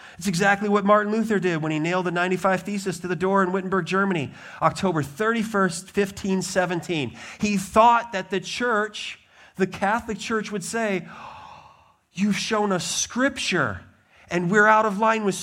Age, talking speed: 40-59, 160 wpm